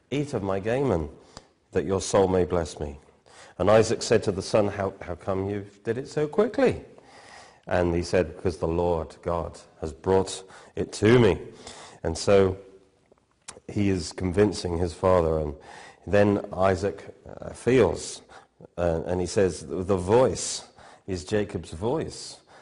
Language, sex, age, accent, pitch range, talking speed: English, male, 40-59, British, 85-105 Hz, 150 wpm